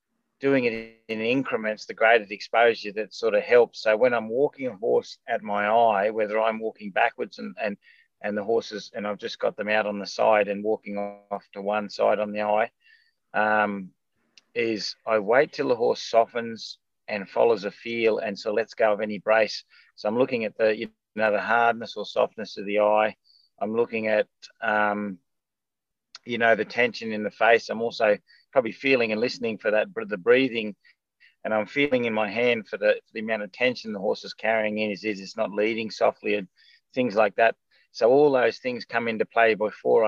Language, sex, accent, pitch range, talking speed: English, male, Australian, 105-135 Hz, 205 wpm